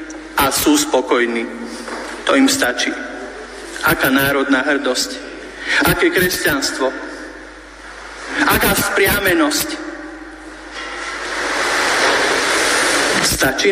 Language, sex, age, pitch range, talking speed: Slovak, male, 50-69, 230-335 Hz, 60 wpm